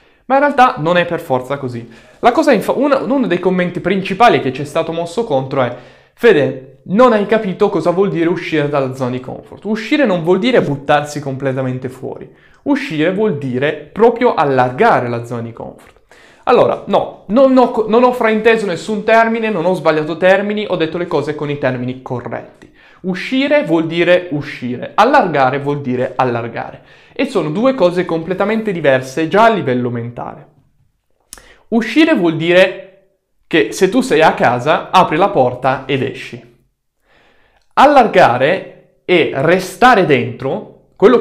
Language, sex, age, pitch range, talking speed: Italian, male, 20-39, 135-215 Hz, 155 wpm